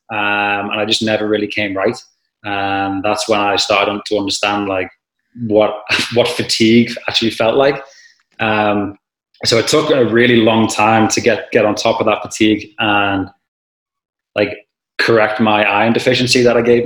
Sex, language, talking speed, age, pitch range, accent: male, English, 165 wpm, 20-39, 105-120 Hz, British